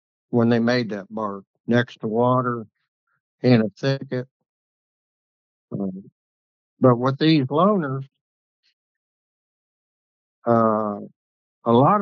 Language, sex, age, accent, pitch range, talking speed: English, male, 60-79, American, 110-145 Hz, 90 wpm